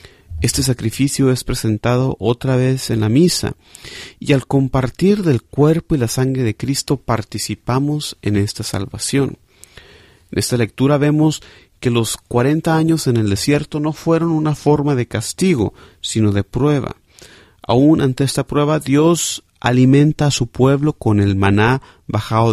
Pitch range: 105-145 Hz